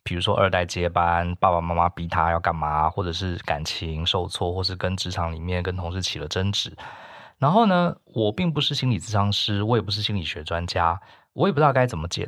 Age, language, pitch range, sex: 20-39, Chinese, 90-125 Hz, male